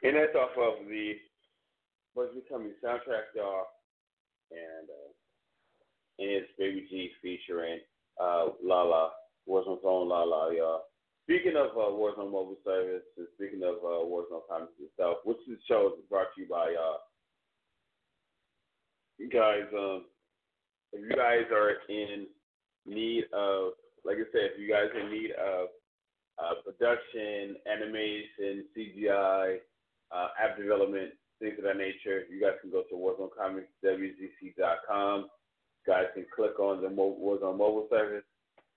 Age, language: 30-49, English